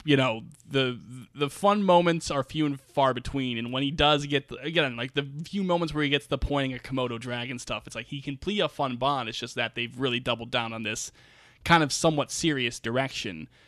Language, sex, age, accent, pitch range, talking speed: English, male, 20-39, American, 120-170 Hz, 230 wpm